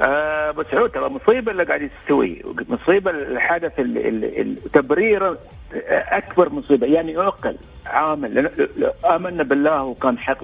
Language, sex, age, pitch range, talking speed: Arabic, male, 50-69, 145-210 Hz, 115 wpm